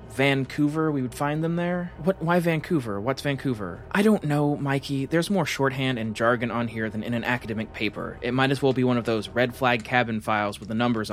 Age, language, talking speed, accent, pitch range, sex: 20-39, English, 225 wpm, American, 115-145 Hz, male